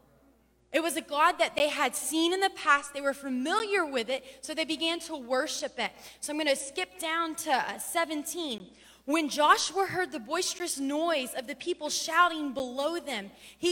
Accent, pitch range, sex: American, 265-335 Hz, female